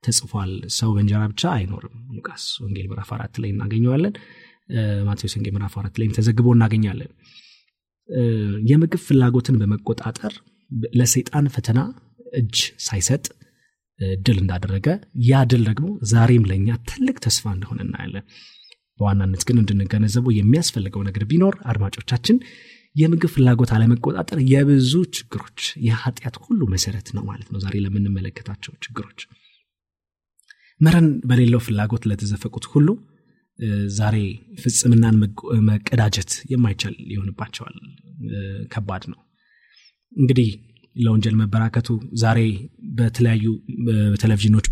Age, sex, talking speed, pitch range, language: 30-49, male, 90 wpm, 105-130 Hz, Amharic